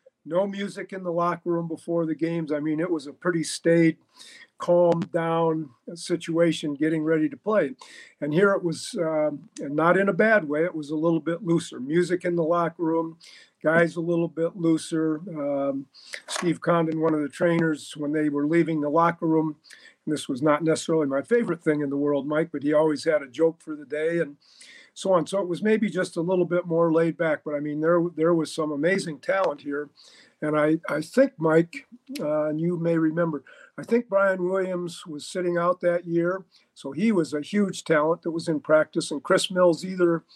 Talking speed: 210 wpm